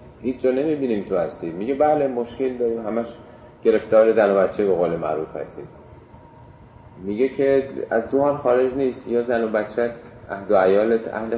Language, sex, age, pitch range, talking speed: Persian, male, 30-49, 105-125 Hz, 170 wpm